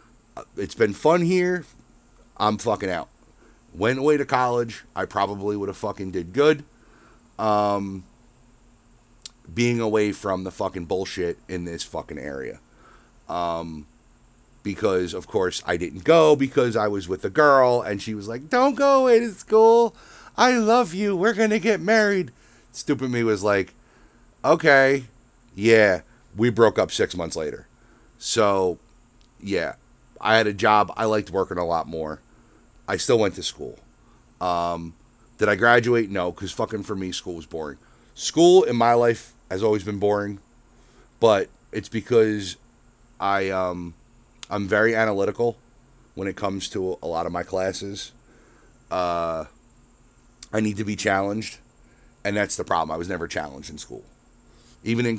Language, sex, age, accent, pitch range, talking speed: English, male, 30-49, American, 95-125 Hz, 155 wpm